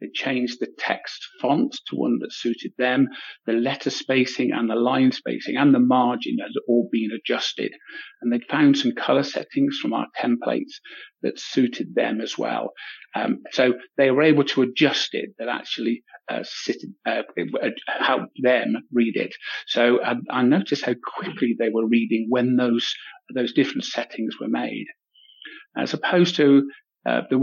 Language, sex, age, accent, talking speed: English, male, 50-69, British, 170 wpm